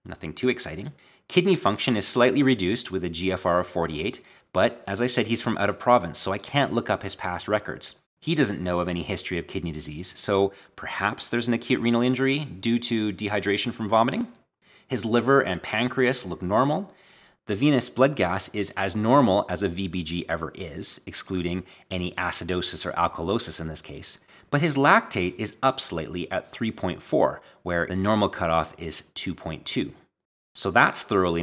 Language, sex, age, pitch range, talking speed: English, male, 30-49, 90-120 Hz, 180 wpm